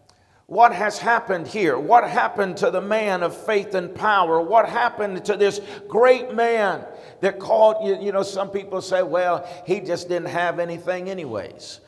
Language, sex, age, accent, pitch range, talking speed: English, male, 50-69, American, 180-215 Hz, 165 wpm